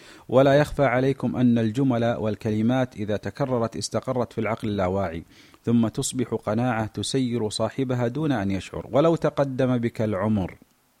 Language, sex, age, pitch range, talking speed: Arabic, male, 40-59, 110-135 Hz, 130 wpm